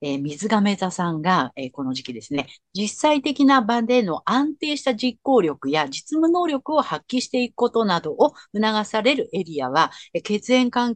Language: Japanese